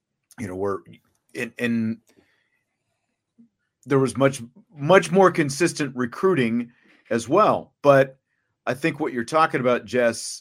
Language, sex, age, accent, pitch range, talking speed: English, male, 40-59, American, 110-135 Hz, 125 wpm